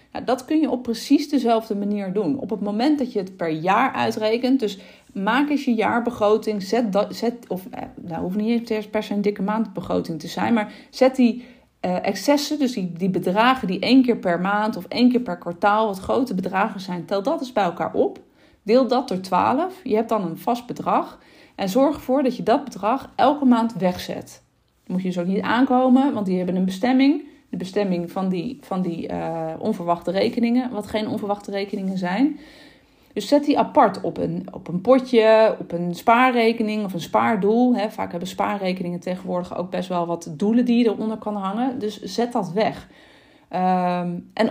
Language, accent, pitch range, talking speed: Dutch, Dutch, 190-250 Hz, 205 wpm